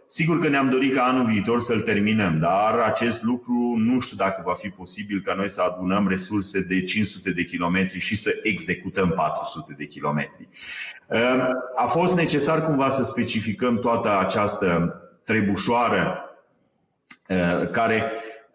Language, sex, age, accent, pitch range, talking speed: Romanian, male, 30-49, native, 100-140 Hz, 140 wpm